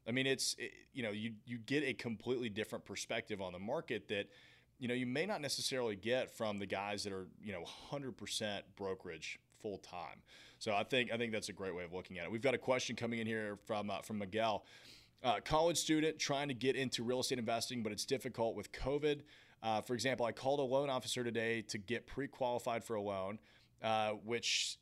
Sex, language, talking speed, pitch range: male, English, 220 wpm, 110-130 Hz